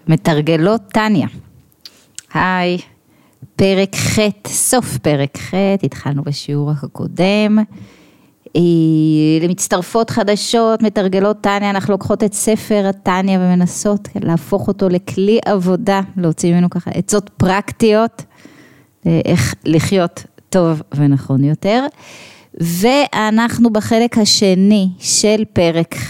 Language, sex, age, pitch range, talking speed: Hebrew, female, 30-49, 165-205 Hz, 90 wpm